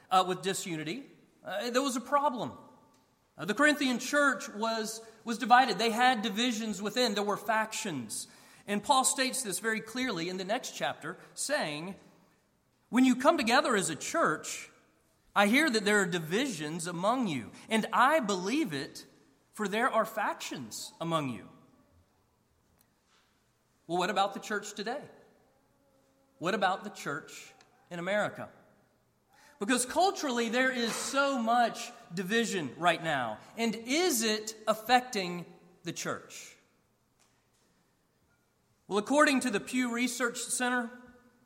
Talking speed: 135 wpm